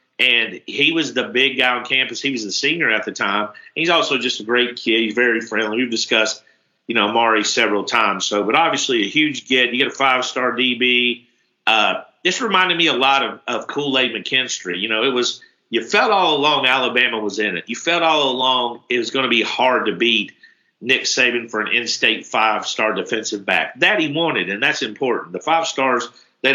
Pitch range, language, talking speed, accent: 115-130 Hz, English, 215 wpm, American